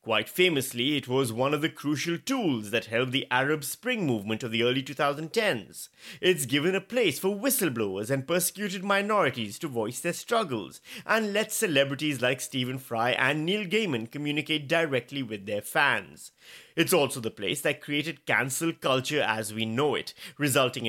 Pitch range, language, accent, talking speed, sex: 120-180 Hz, English, Indian, 170 wpm, male